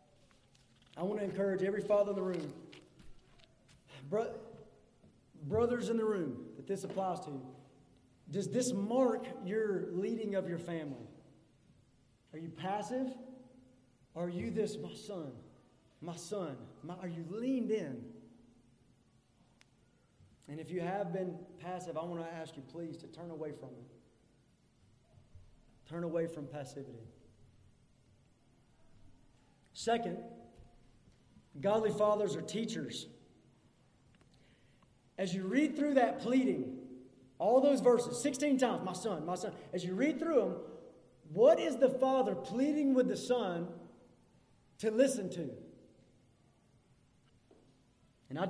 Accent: American